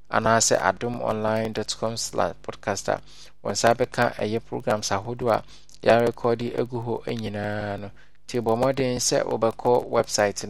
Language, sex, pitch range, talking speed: English, male, 105-120 Hz, 130 wpm